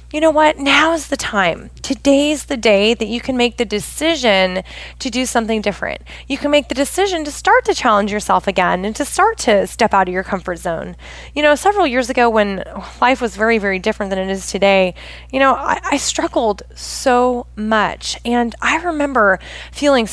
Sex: female